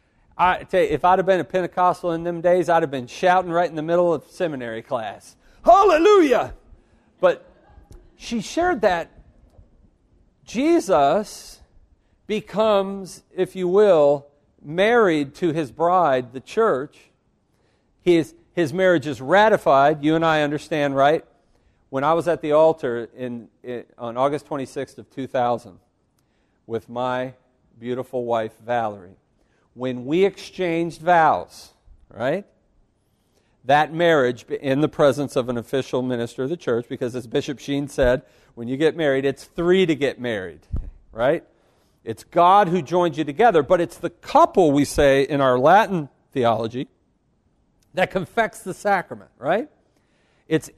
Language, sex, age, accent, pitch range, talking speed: English, male, 50-69, American, 130-180 Hz, 145 wpm